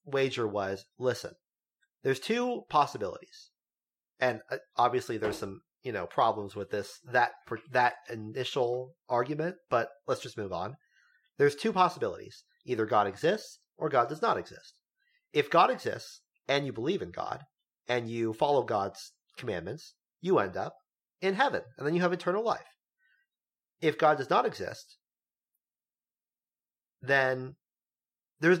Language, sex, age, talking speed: English, male, 40-59, 140 wpm